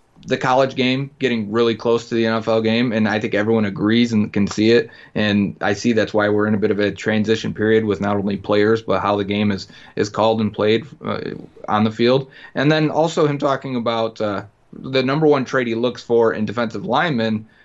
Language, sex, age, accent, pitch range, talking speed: English, male, 30-49, American, 105-125 Hz, 225 wpm